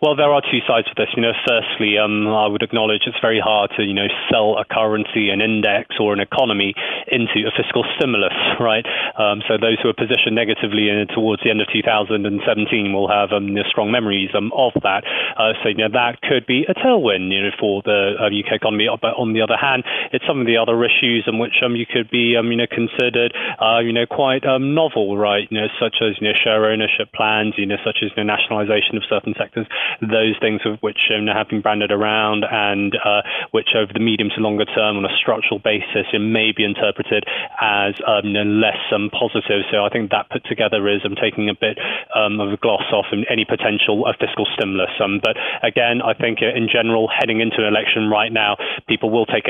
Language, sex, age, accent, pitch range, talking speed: English, male, 20-39, British, 105-115 Hz, 220 wpm